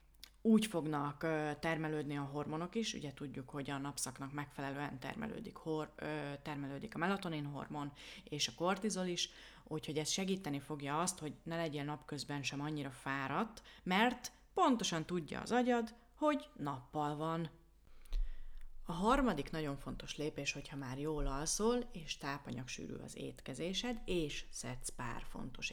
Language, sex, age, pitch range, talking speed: Hungarian, female, 30-49, 145-195 Hz, 135 wpm